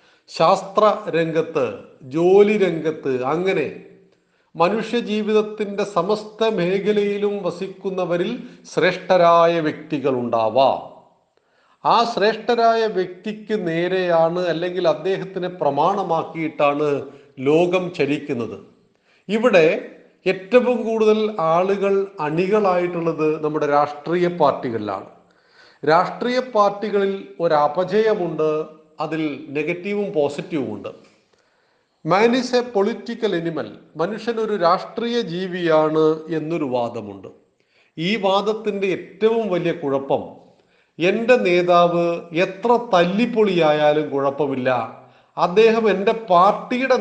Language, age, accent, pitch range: Malayalam, 40-59, native, 155-215 Hz